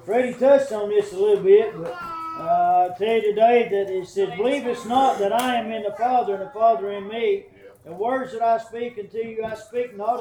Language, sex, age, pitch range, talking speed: English, male, 40-59, 210-270 Hz, 235 wpm